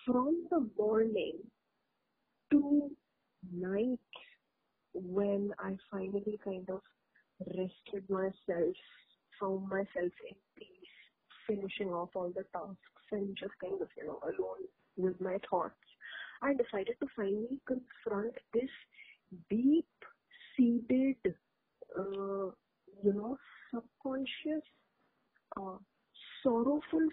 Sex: female